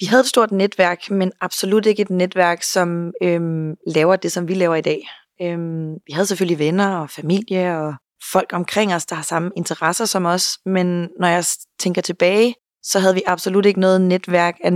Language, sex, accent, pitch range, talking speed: Danish, female, native, 170-195 Hz, 200 wpm